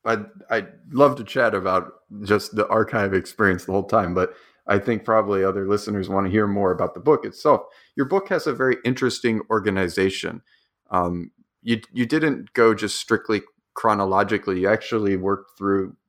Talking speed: 170 wpm